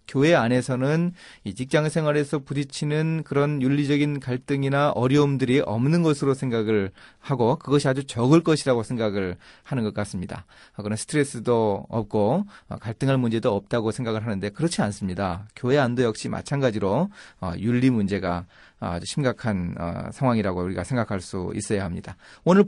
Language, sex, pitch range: Korean, male, 110-160 Hz